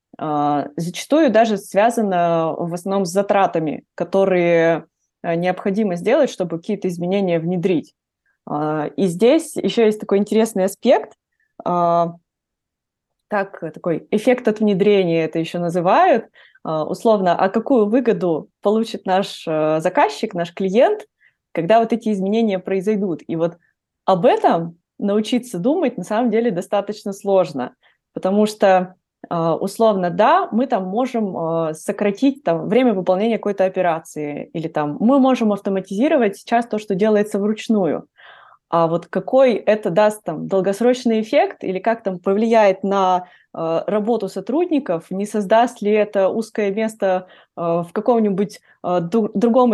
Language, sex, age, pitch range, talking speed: Russian, female, 20-39, 180-225 Hz, 120 wpm